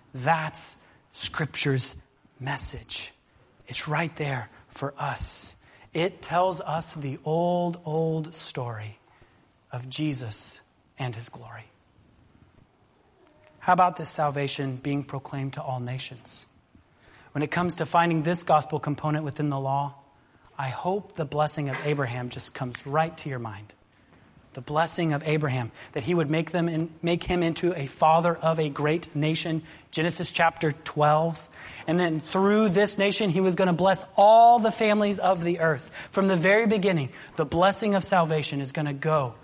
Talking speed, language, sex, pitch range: 155 wpm, English, male, 140-175 Hz